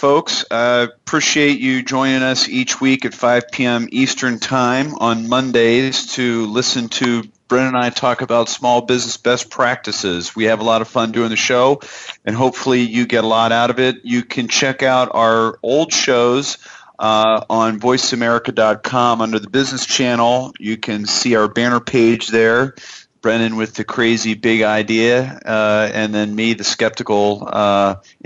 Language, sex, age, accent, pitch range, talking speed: English, male, 40-59, American, 110-130 Hz, 170 wpm